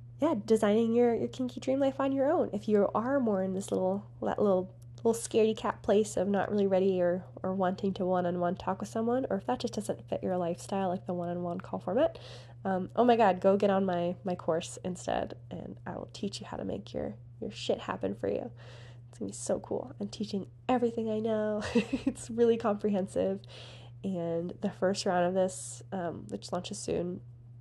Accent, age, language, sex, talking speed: American, 20-39, English, female, 210 wpm